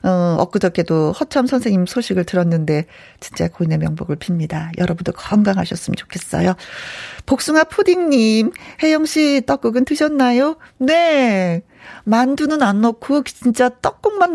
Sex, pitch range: female, 180-255 Hz